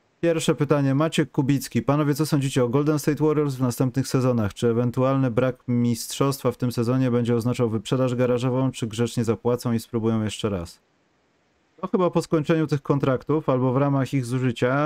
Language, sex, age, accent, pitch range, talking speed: Polish, male, 30-49, native, 115-150 Hz, 175 wpm